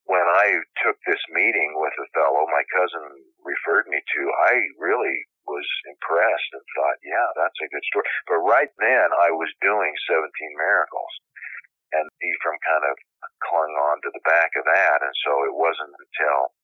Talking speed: 175 wpm